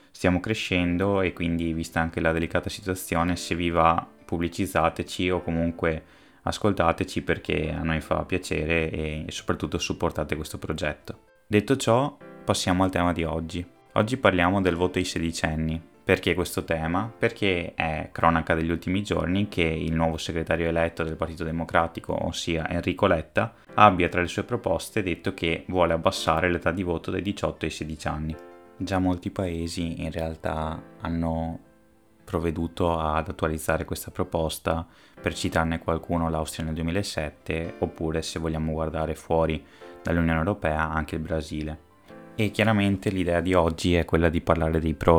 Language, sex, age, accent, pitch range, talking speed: Italian, male, 20-39, native, 80-90 Hz, 155 wpm